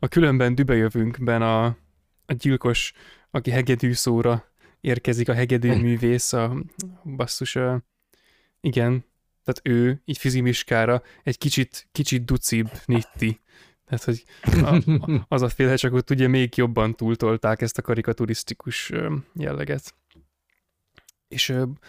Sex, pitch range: male, 115-130 Hz